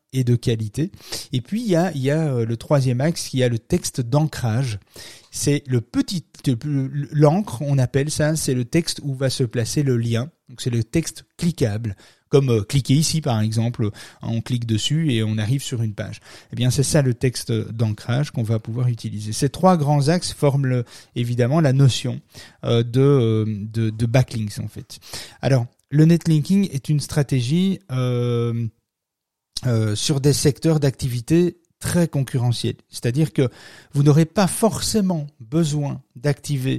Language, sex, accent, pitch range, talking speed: French, male, French, 115-145 Hz, 175 wpm